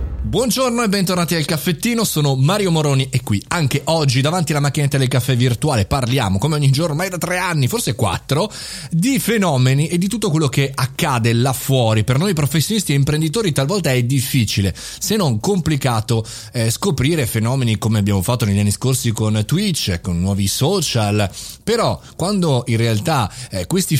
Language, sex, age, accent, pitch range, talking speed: Italian, male, 30-49, native, 110-160 Hz, 175 wpm